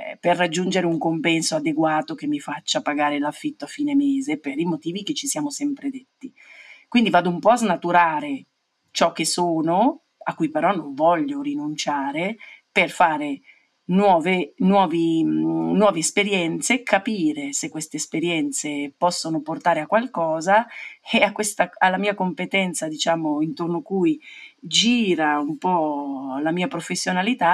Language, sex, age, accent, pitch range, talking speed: Italian, female, 40-59, native, 160-265 Hz, 145 wpm